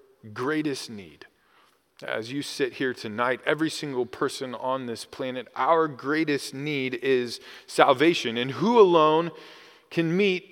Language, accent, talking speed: English, American, 130 wpm